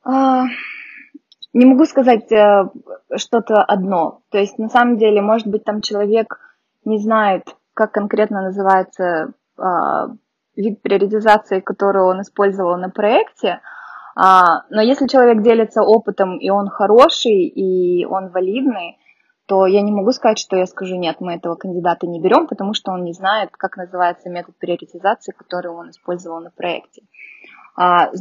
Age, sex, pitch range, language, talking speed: 20-39, female, 185-225 Hz, Russian, 140 wpm